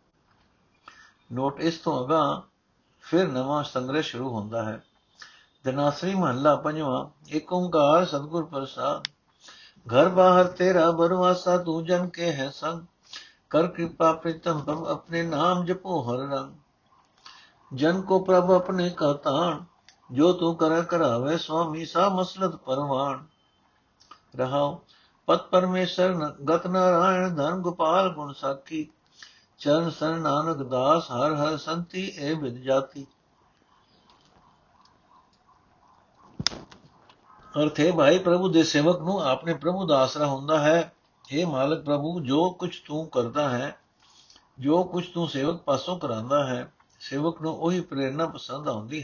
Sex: male